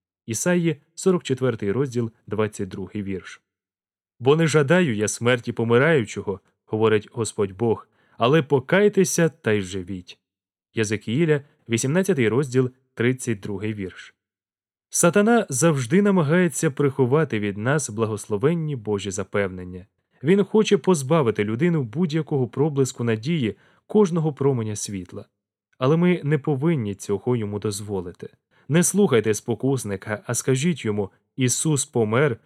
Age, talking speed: 20-39, 110 wpm